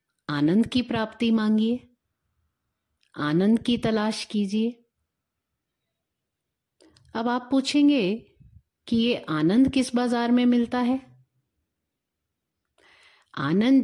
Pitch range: 140-225 Hz